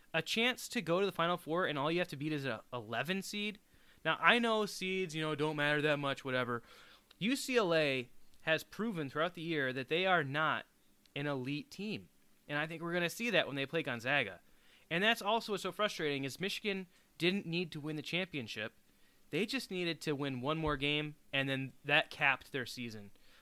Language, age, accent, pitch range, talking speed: English, 20-39, American, 135-190 Hz, 210 wpm